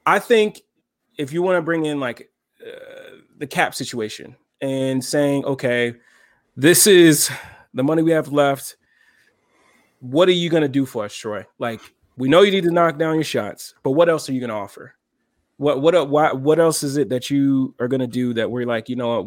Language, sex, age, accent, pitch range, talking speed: English, male, 20-39, American, 125-160 Hz, 220 wpm